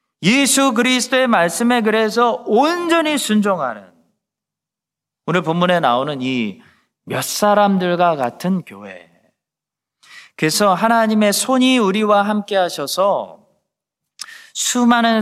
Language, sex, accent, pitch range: Korean, male, native, 145-210 Hz